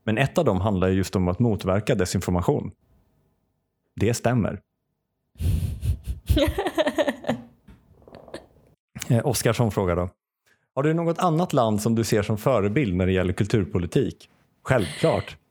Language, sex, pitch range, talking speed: Swedish, male, 95-135 Hz, 115 wpm